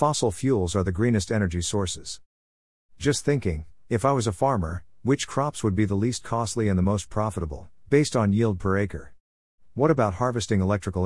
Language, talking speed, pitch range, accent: English, 185 wpm, 90-115 Hz, American